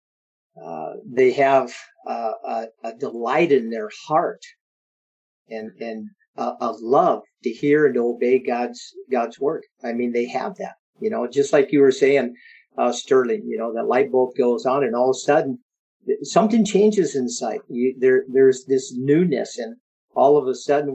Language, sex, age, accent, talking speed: English, male, 50-69, American, 180 wpm